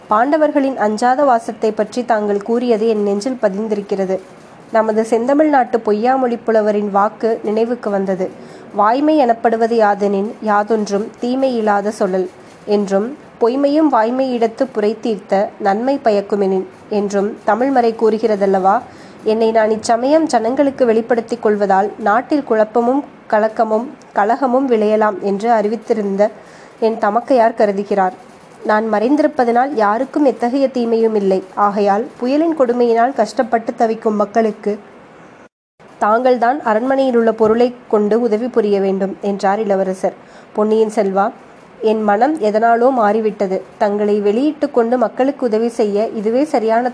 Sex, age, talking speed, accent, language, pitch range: female, 20-39, 110 wpm, native, Tamil, 205-245 Hz